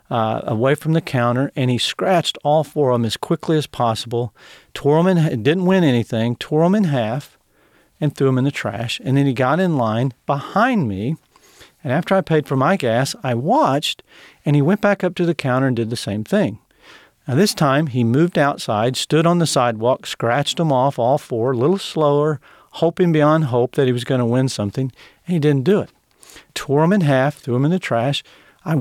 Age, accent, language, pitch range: 50-69, American, English, 130-180 Hz